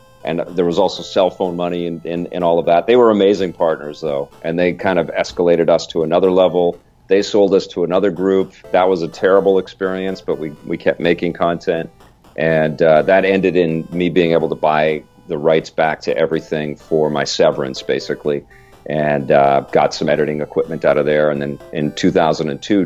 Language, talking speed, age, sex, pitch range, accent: English, 195 wpm, 40-59, male, 75-90 Hz, American